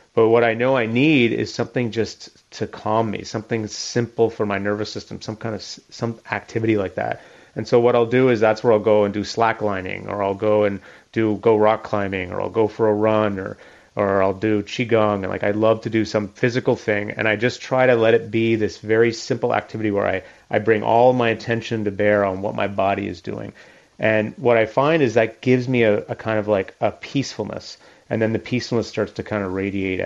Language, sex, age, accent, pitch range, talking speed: English, male, 30-49, American, 105-120 Hz, 235 wpm